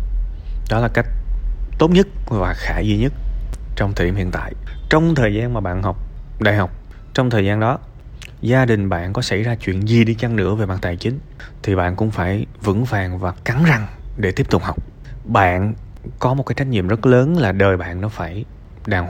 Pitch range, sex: 95-120 Hz, male